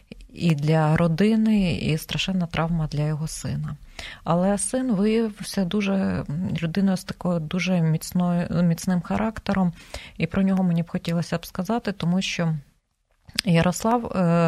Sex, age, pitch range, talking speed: female, 30-49, 160-190 Hz, 130 wpm